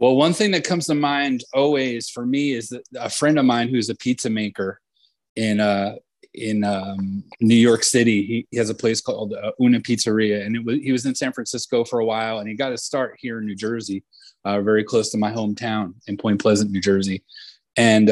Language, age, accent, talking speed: English, 30-49, American, 225 wpm